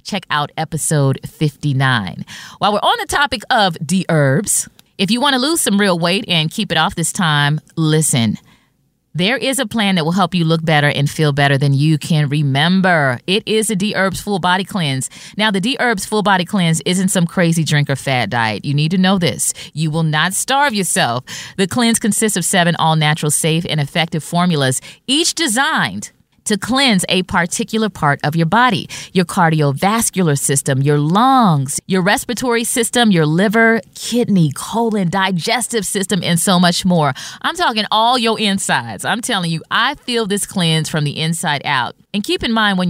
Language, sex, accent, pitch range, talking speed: English, female, American, 160-215 Hz, 185 wpm